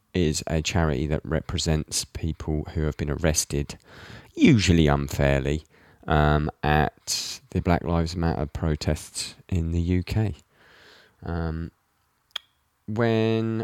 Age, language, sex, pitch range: 20-39, English, male, 80-110 Hz